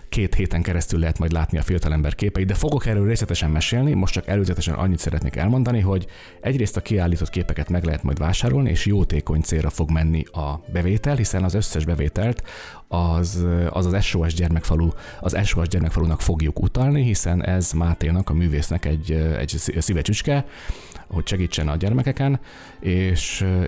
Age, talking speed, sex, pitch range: 30-49, 160 wpm, male, 80-100 Hz